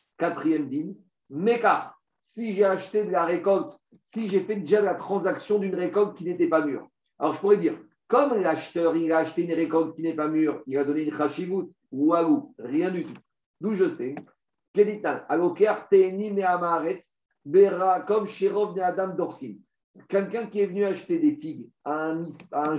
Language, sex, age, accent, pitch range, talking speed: French, male, 50-69, French, 165-210 Hz, 160 wpm